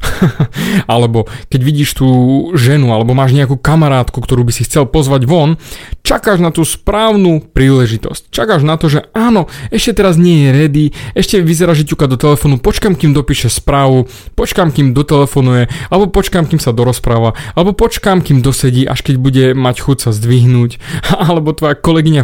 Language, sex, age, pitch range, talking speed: Slovak, male, 30-49, 125-165 Hz, 160 wpm